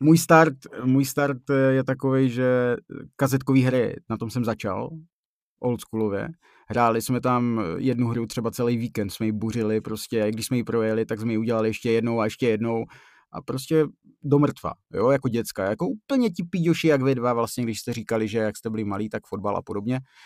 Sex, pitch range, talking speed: male, 105-130 Hz, 195 wpm